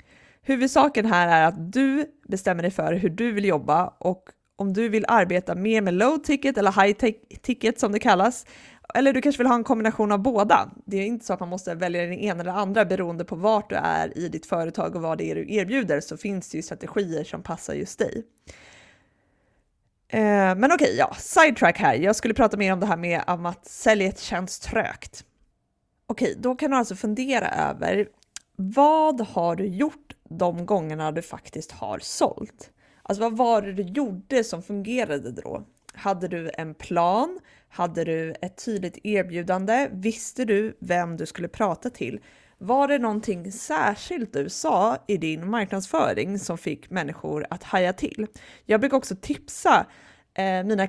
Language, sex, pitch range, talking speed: Swedish, female, 180-235 Hz, 180 wpm